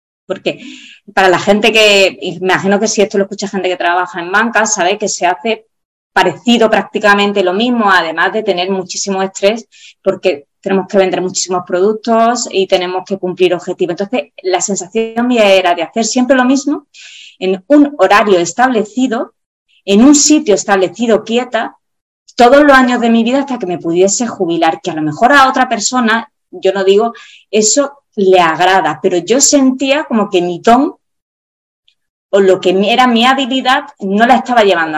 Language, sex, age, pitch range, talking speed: Spanish, female, 20-39, 185-235 Hz, 170 wpm